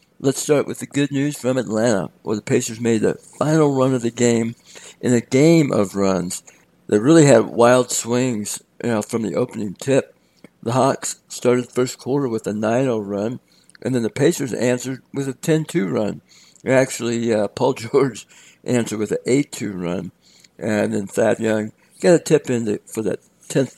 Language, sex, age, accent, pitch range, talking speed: English, male, 60-79, American, 110-135 Hz, 185 wpm